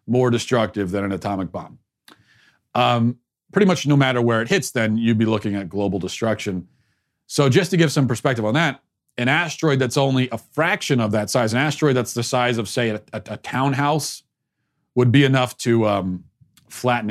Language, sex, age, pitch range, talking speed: English, male, 40-59, 100-130 Hz, 195 wpm